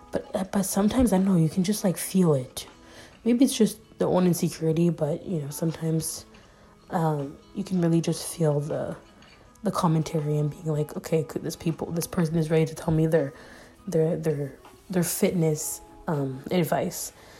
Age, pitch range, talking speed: 20-39, 160-185 Hz, 180 wpm